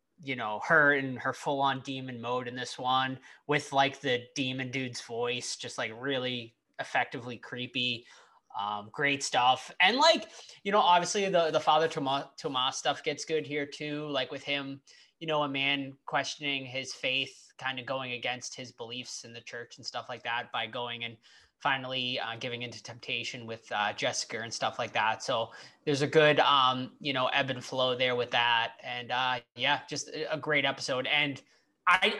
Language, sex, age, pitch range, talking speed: English, male, 20-39, 120-145 Hz, 185 wpm